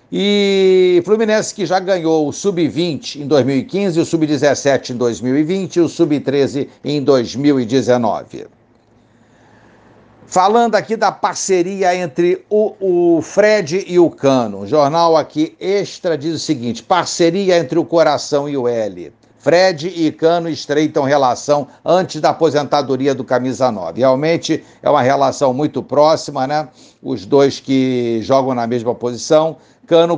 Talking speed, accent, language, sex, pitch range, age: 135 wpm, Brazilian, Portuguese, male, 130-165 Hz, 60-79